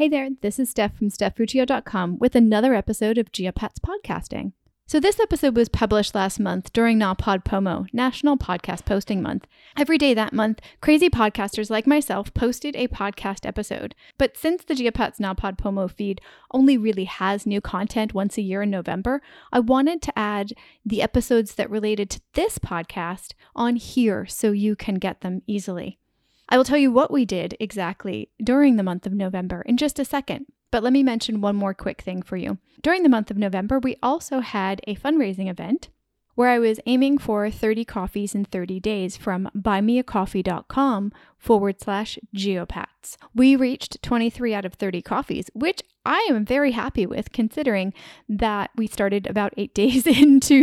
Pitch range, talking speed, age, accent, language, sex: 200-260 Hz, 175 wpm, 10-29, American, English, female